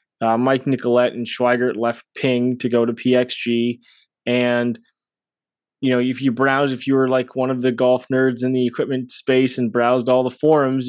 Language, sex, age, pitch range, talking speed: English, male, 20-39, 120-140 Hz, 195 wpm